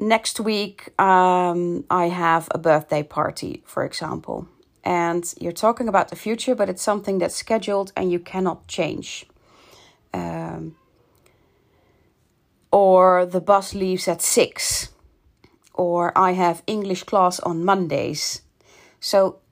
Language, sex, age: English, female, 40-59